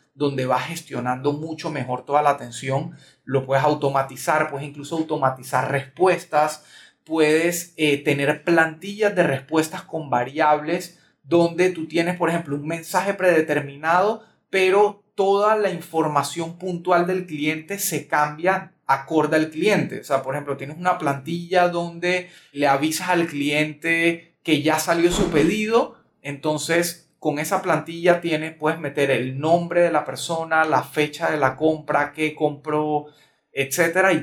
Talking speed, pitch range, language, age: 140 wpm, 140-170 Hz, Spanish, 30-49